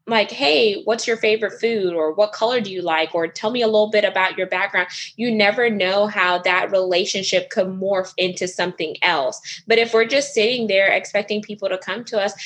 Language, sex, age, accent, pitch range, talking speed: English, female, 20-39, American, 185-220 Hz, 210 wpm